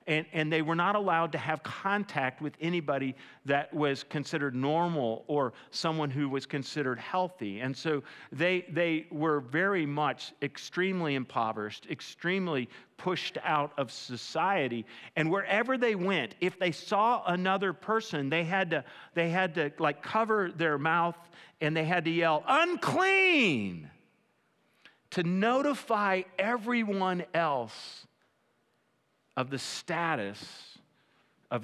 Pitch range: 135-180 Hz